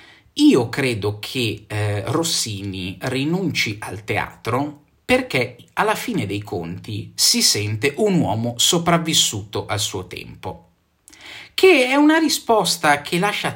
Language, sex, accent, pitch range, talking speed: Italian, male, native, 110-165 Hz, 120 wpm